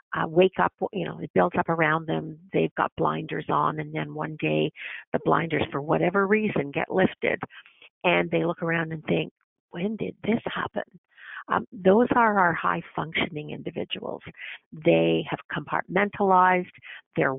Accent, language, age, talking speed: American, English, 50-69, 160 wpm